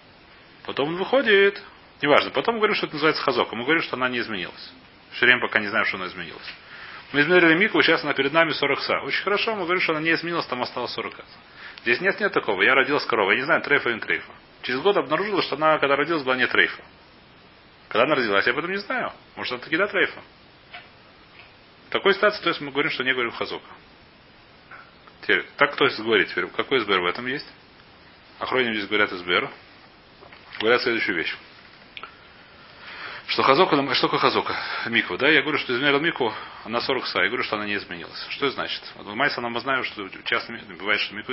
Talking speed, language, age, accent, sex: 210 wpm, Russian, 30-49, native, male